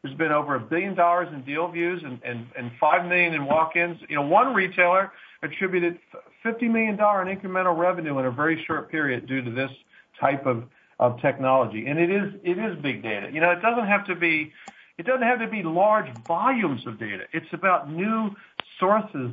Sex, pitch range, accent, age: male, 140-185 Hz, American, 50-69